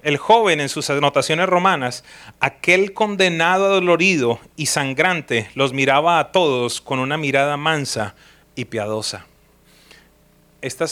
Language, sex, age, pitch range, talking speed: English, male, 30-49, 135-185 Hz, 120 wpm